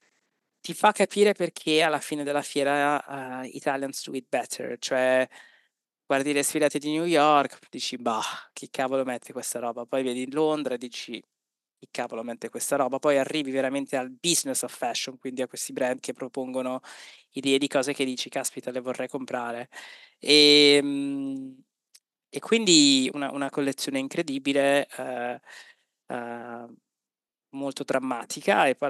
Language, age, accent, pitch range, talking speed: Italian, 20-39, native, 130-145 Hz, 145 wpm